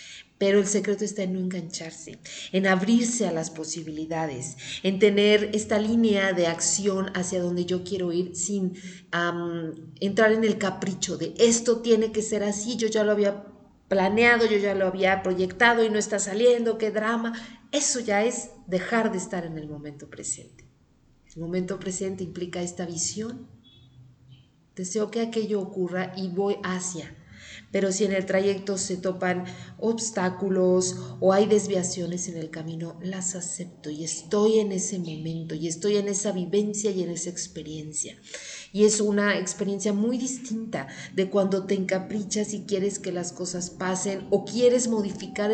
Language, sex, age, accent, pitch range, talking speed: Spanish, female, 40-59, Mexican, 180-215 Hz, 160 wpm